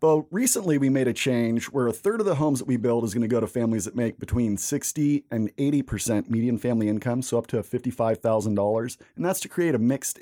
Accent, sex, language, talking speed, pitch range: American, male, English, 260 wpm, 110-140 Hz